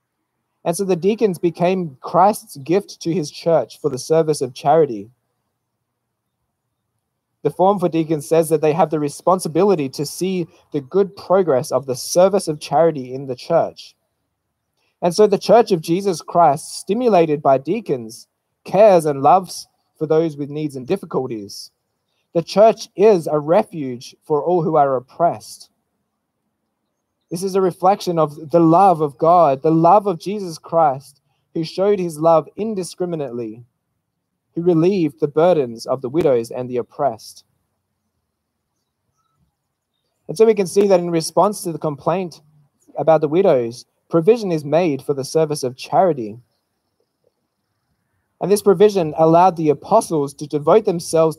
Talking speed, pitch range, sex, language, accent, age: 150 wpm, 130-180 Hz, male, English, Australian, 20-39